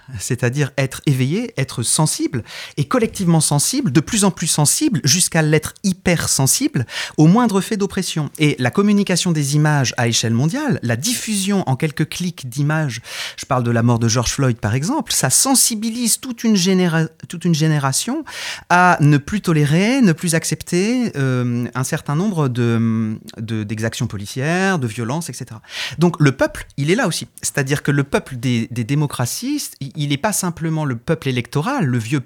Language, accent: French, French